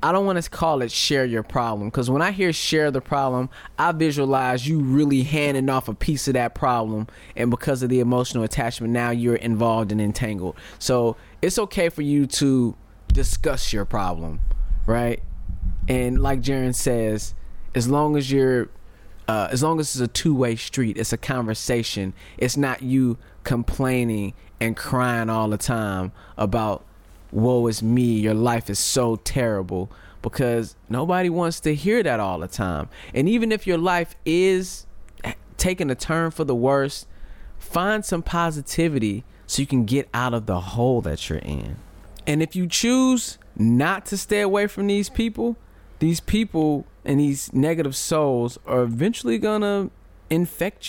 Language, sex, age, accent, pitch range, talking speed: English, male, 20-39, American, 110-150 Hz, 165 wpm